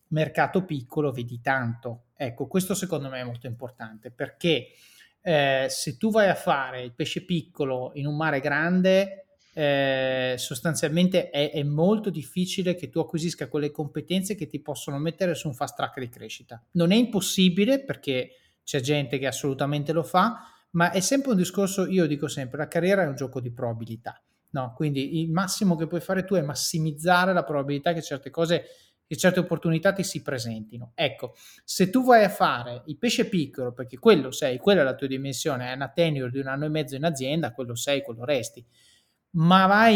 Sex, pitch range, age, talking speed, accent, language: male, 140-180 Hz, 30-49, 190 wpm, native, Italian